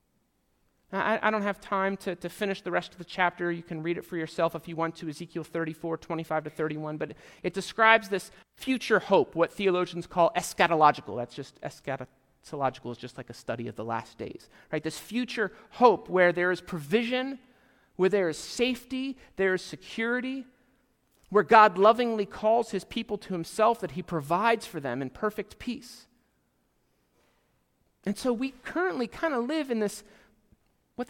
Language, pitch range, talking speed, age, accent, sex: English, 170-240 Hz, 180 wpm, 40-59, American, male